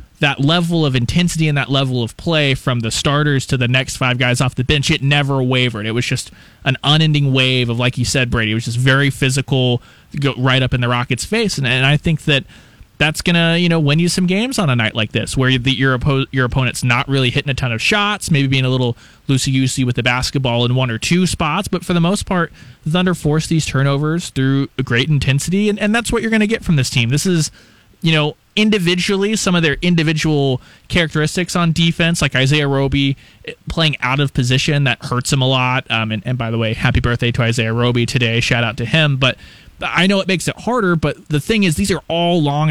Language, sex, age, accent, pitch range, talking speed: English, male, 30-49, American, 125-160 Hz, 240 wpm